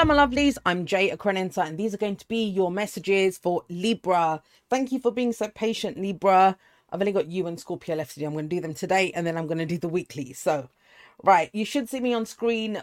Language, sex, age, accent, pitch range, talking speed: English, female, 30-49, British, 160-205 Hz, 245 wpm